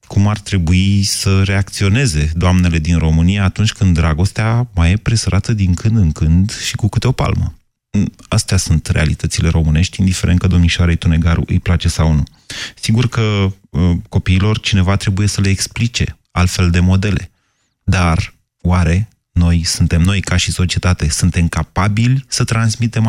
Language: Romanian